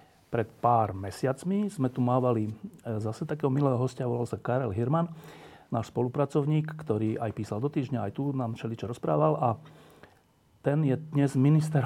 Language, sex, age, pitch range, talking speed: Slovak, male, 40-59, 115-145 Hz, 155 wpm